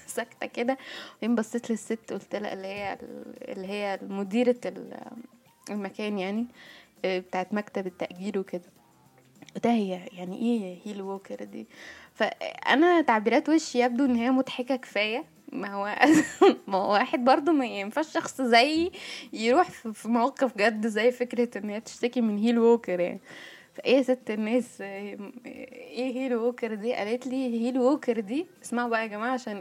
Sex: female